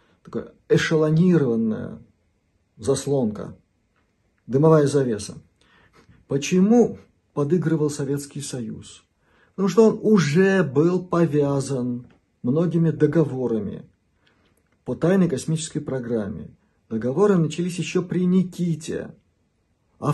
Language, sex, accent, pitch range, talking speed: Russian, male, native, 125-175 Hz, 80 wpm